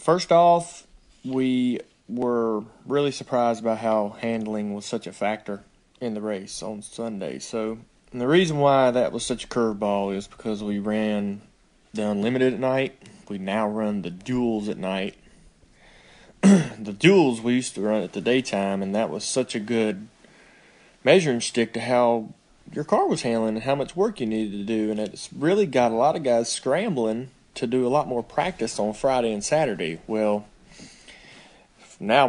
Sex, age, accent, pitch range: male, 30-49, American, 110-130 Hz